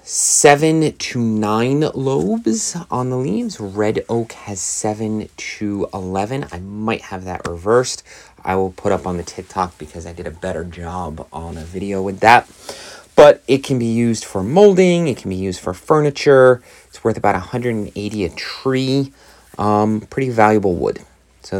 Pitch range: 95-120 Hz